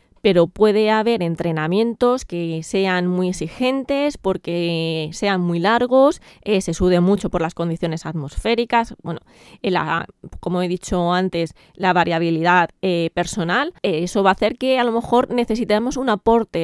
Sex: female